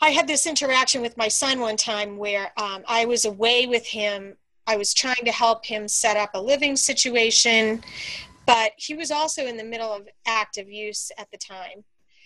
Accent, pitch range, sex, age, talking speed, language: American, 215-285 Hz, female, 30-49, 195 wpm, English